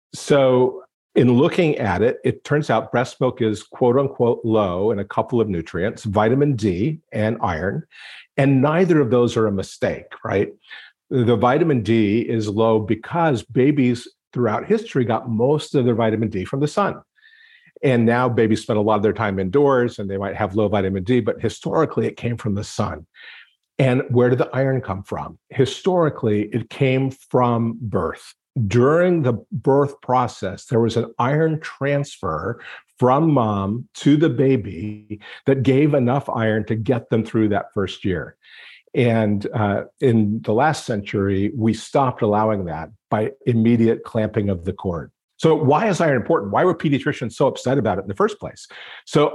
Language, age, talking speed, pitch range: English, 50-69, 175 wpm, 110-140 Hz